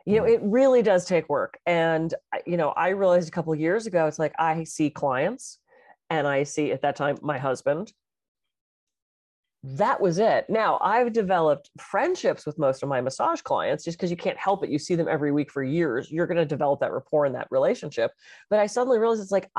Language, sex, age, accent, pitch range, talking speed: English, female, 30-49, American, 155-230 Hz, 220 wpm